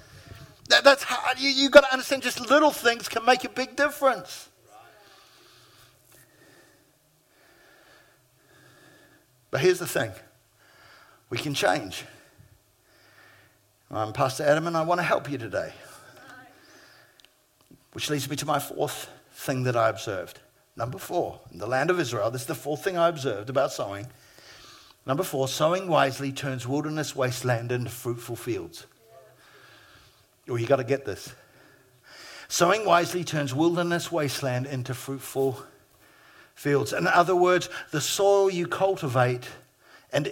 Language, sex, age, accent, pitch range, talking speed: English, male, 50-69, British, 135-205 Hz, 130 wpm